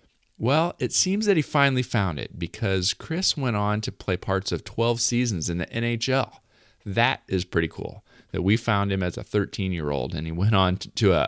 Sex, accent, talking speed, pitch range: male, American, 200 wpm, 85-110 Hz